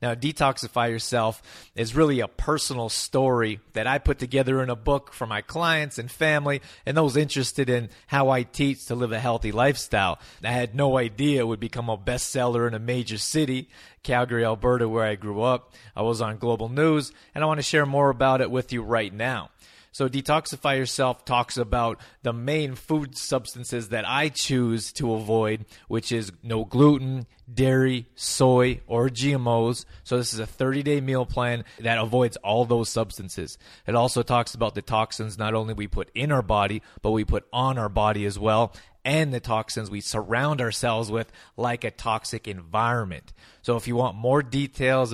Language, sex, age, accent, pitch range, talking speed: English, male, 30-49, American, 110-130 Hz, 185 wpm